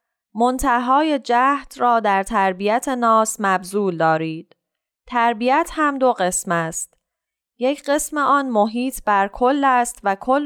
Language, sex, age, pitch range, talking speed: Persian, female, 10-29, 190-255 Hz, 125 wpm